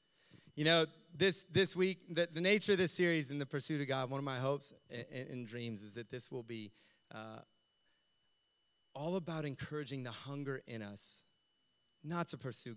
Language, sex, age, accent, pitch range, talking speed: English, male, 30-49, American, 130-185 Hz, 185 wpm